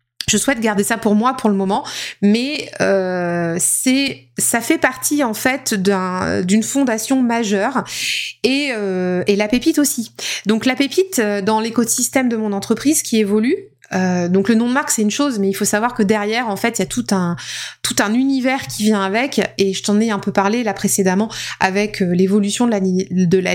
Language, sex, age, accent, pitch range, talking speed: French, female, 30-49, French, 195-245 Hz, 205 wpm